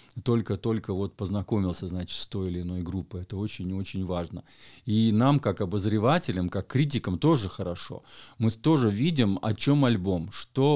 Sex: male